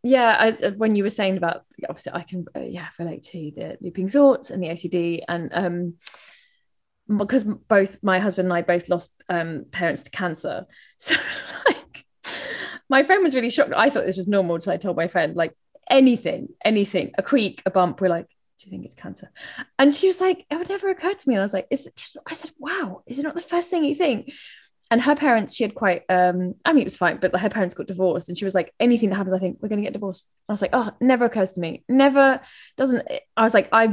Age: 20-39